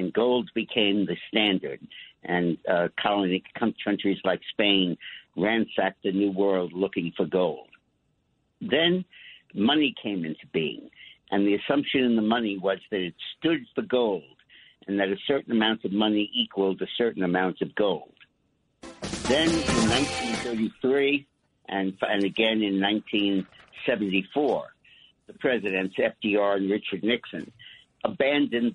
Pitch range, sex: 95-115 Hz, male